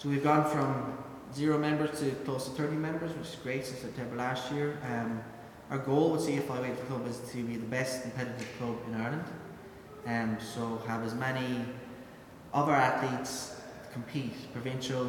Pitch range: 115-130 Hz